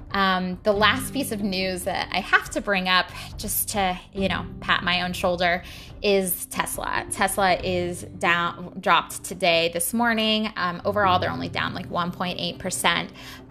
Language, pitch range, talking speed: English, 170-220 Hz, 160 wpm